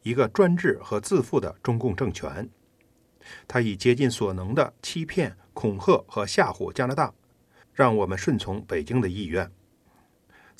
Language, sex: Chinese, male